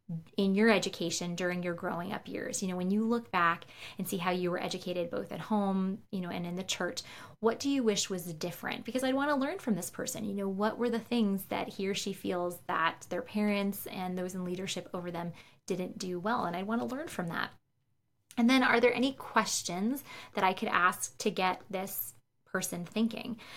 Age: 20-39